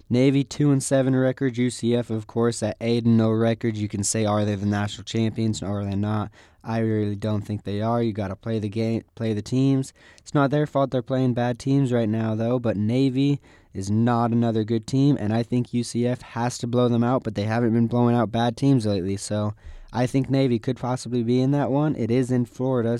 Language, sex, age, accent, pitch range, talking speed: English, male, 20-39, American, 105-125 Hz, 235 wpm